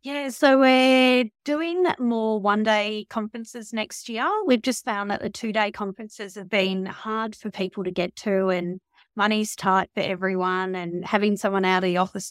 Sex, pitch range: female, 185-215 Hz